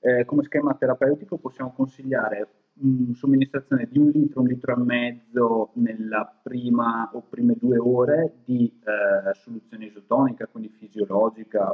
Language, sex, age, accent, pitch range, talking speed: Italian, male, 20-39, native, 115-140 Hz, 140 wpm